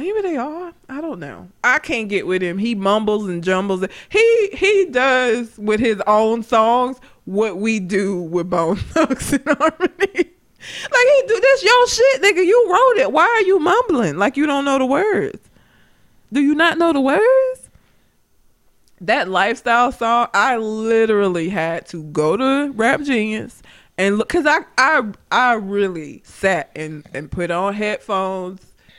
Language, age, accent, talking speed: English, 20-39, American, 165 wpm